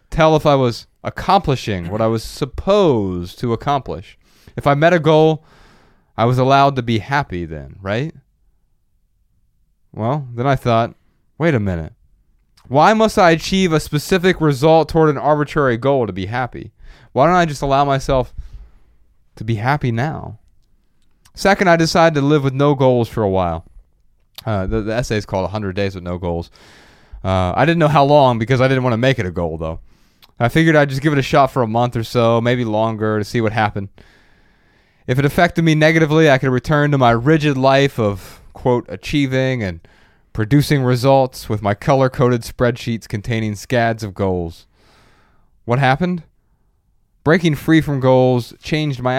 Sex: male